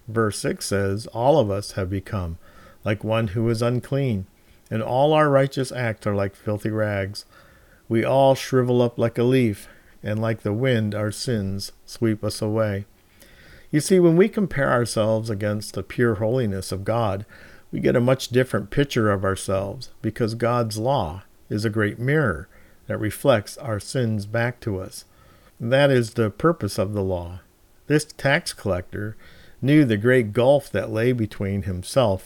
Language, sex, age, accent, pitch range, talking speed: English, male, 50-69, American, 100-125 Hz, 165 wpm